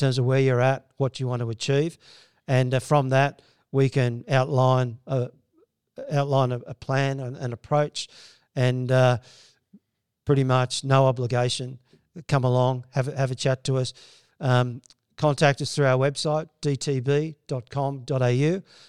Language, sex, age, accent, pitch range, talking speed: English, male, 50-69, Australian, 125-140 Hz, 145 wpm